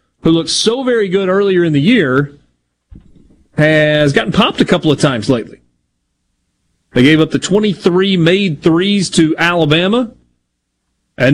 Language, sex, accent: English, male, American